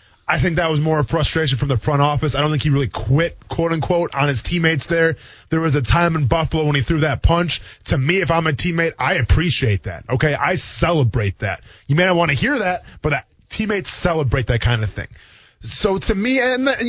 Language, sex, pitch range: English, male, 135-170 Hz